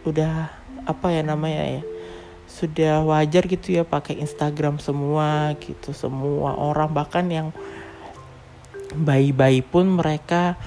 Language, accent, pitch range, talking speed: Indonesian, native, 140-175 Hz, 110 wpm